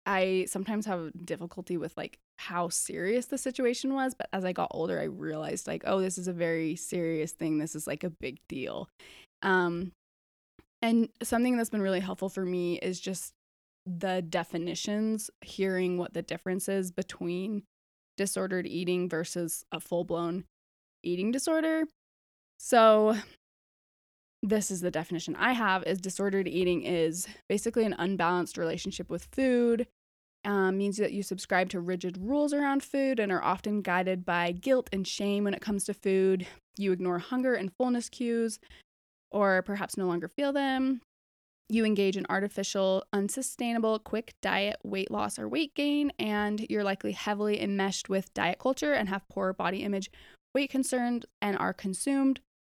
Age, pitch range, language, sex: 20-39, 180-220 Hz, English, female